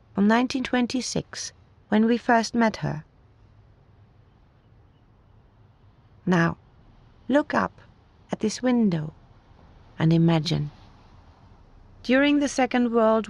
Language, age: English, 30-49